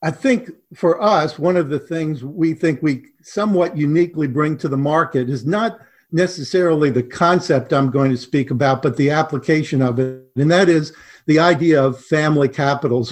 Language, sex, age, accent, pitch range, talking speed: English, male, 50-69, American, 140-175 Hz, 185 wpm